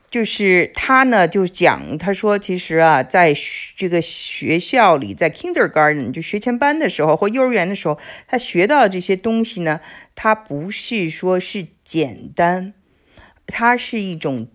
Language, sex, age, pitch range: Chinese, female, 50-69, 155-215 Hz